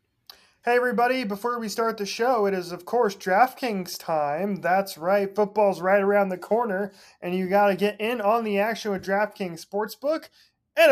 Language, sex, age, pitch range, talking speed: English, male, 20-39, 190-230 Hz, 180 wpm